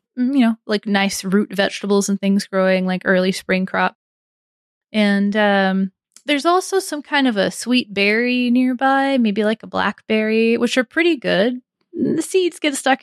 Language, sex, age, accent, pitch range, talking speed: English, female, 20-39, American, 190-245 Hz, 165 wpm